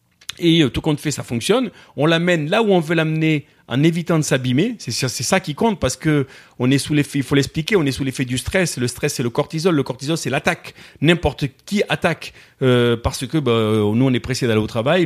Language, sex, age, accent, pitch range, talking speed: French, male, 40-59, French, 125-170 Hz, 240 wpm